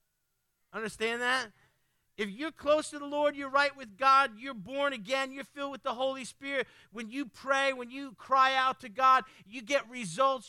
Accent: American